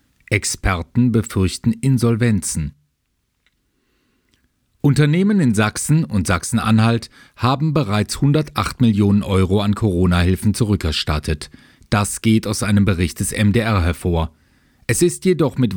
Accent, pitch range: German, 95-120 Hz